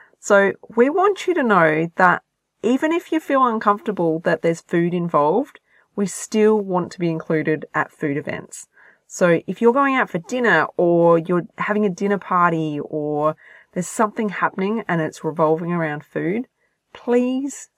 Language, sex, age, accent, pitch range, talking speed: English, female, 30-49, Australian, 160-210 Hz, 160 wpm